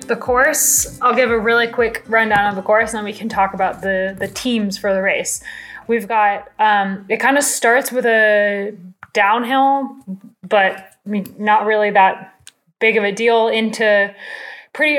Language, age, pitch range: English, 20-39, 200-240 Hz